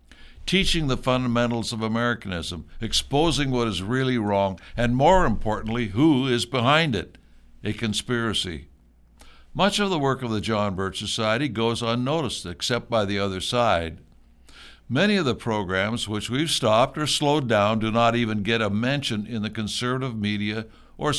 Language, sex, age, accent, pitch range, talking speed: English, male, 60-79, American, 100-130 Hz, 160 wpm